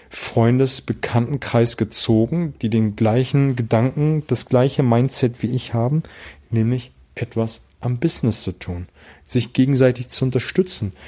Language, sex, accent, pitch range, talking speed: German, male, German, 110-135 Hz, 125 wpm